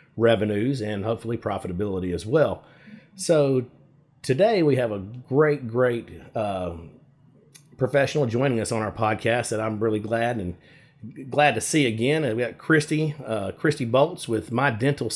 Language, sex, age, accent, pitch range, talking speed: English, male, 40-59, American, 110-140 Hz, 150 wpm